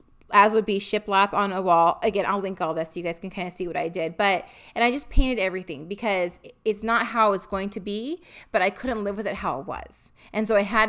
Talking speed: 270 wpm